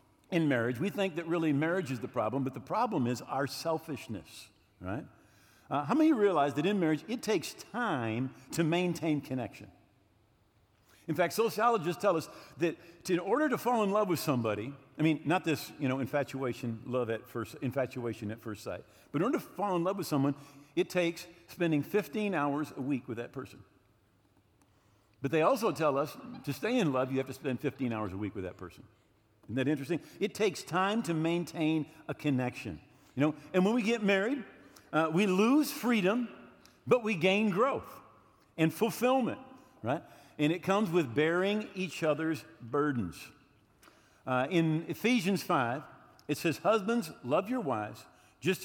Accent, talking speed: American, 180 wpm